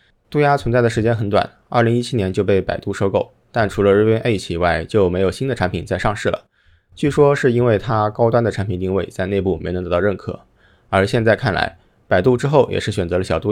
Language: Chinese